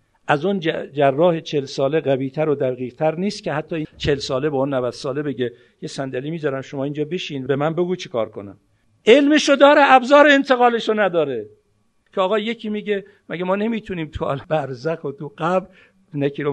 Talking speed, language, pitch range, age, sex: 185 wpm, Persian, 140-210 Hz, 60-79, male